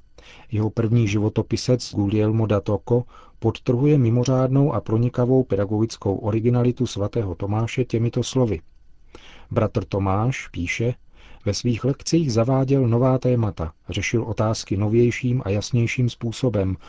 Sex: male